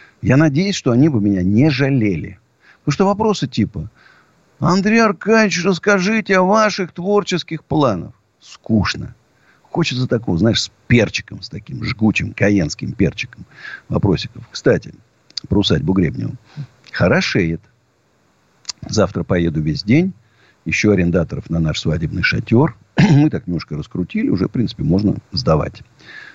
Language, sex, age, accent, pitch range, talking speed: Russian, male, 50-69, native, 95-150 Hz, 125 wpm